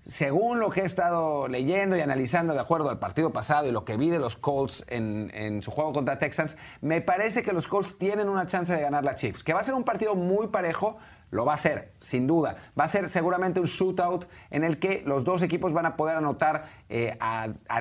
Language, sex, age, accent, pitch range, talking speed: Spanish, male, 40-59, Mexican, 150-190 Hz, 240 wpm